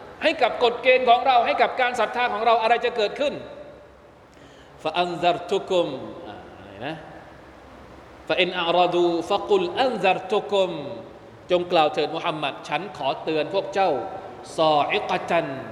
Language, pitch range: Thai, 150-195 Hz